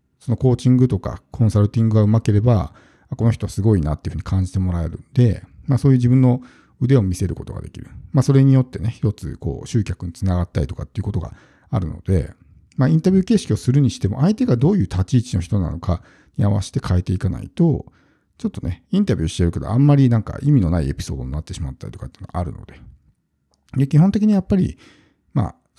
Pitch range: 95-135 Hz